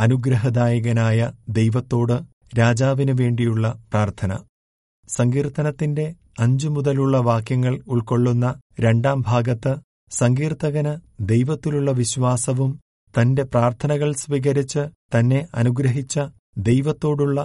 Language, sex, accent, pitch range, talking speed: Malayalam, male, native, 115-135 Hz, 70 wpm